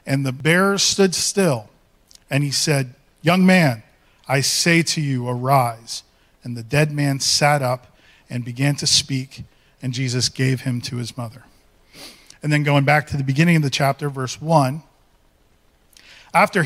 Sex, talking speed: male, 160 wpm